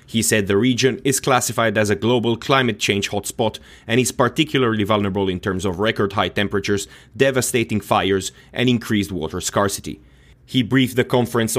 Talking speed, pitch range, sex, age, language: 165 wpm, 100-120 Hz, male, 30-49, English